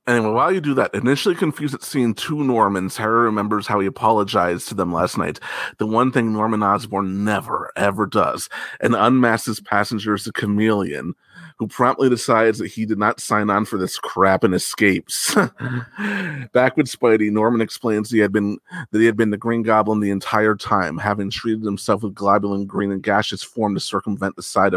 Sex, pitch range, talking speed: male, 100-115 Hz, 185 wpm